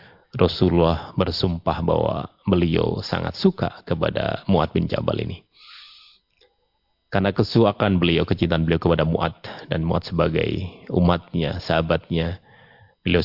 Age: 30-49